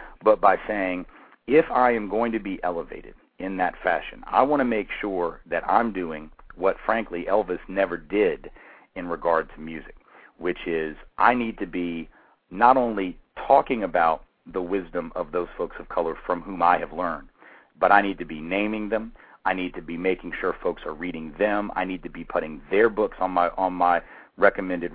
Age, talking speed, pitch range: 40-59, 195 wpm, 85-100 Hz